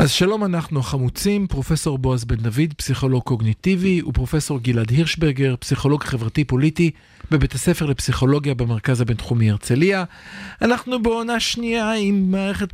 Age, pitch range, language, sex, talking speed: 50-69, 130-175 Hz, Hebrew, male, 125 wpm